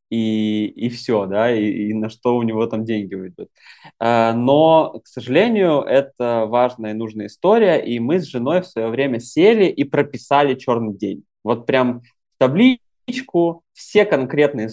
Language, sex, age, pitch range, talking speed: Russian, male, 20-39, 115-165 Hz, 155 wpm